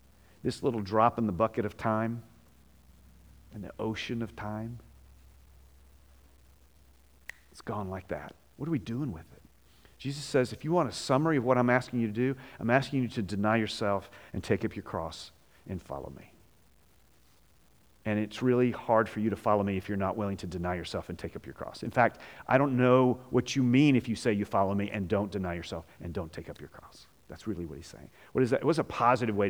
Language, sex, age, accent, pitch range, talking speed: English, male, 40-59, American, 90-120 Hz, 220 wpm